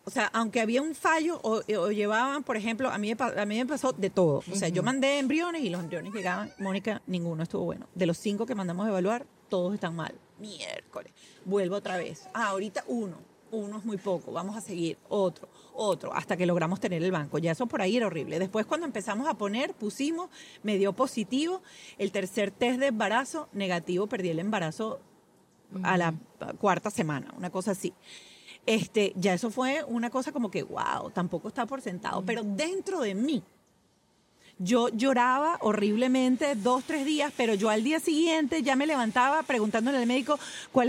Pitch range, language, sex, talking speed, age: 195-270 Hz, Spanish, female, 190 wpm, 40-59